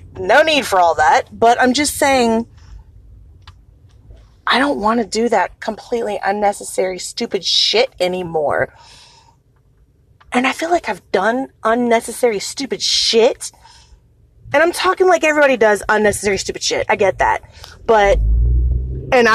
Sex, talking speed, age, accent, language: female, 135 wpm, 30-49, American, English